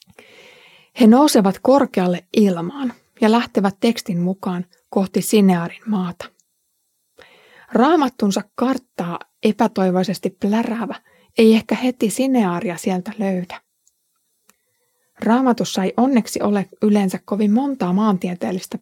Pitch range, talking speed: 190-250 Hz, 90 wpm